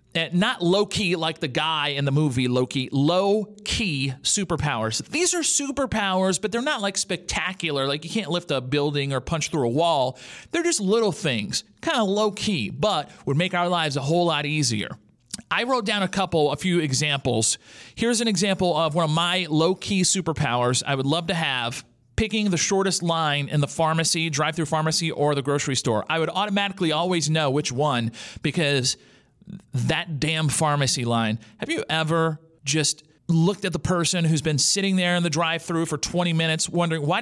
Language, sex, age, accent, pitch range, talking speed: English, male, 40-59, American, 145-195 Hz, 190 wpm